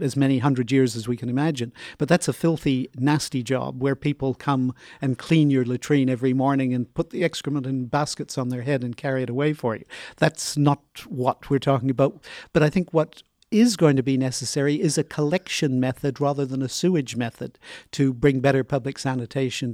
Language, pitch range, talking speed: English, 130-155 Hz, 205 wpm